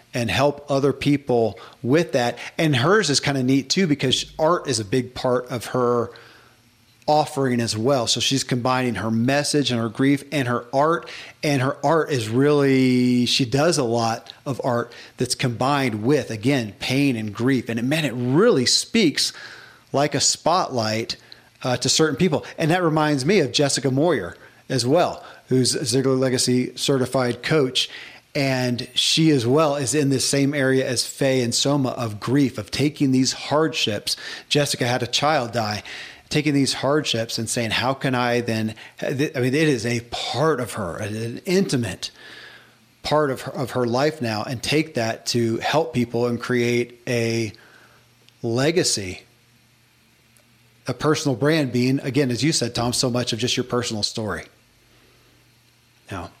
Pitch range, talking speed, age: 120-145 Hz, 165 wpm, 40-59